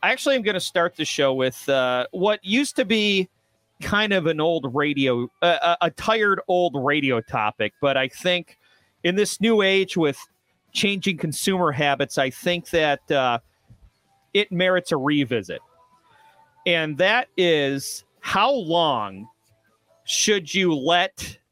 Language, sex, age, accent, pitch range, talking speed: English, male, 30-49, American, 130-175 Hz, 140 wpm